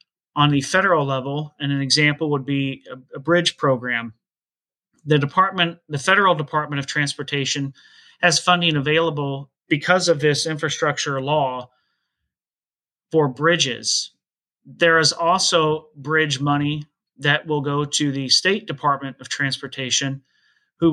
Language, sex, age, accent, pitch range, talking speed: English, male, 30-49, American, 140-165 Hz, 125 wpm